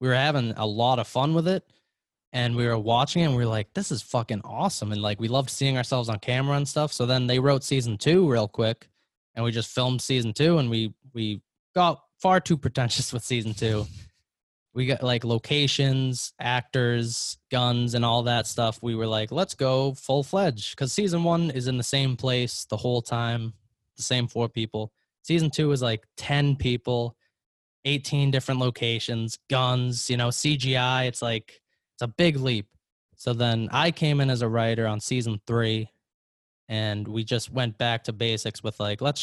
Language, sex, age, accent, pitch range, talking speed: English, male, 10-29, American, 110-135 Hz, 195 wpm